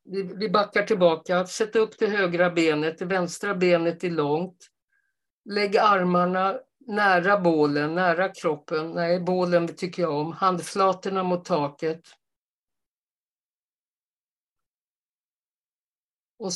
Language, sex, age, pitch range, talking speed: Swedish, female, 50-69, 175-195 Hz, 100 wpm